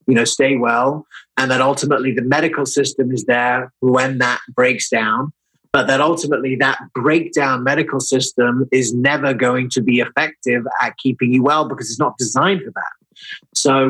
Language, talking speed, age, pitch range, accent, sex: English, 175 wpm, 30-49, 125-150 Hz, British, male